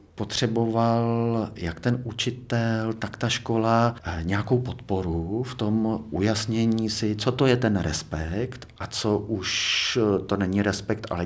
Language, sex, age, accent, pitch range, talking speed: Czech, male, 50-69, native, 90-110 Hz, 135 wpm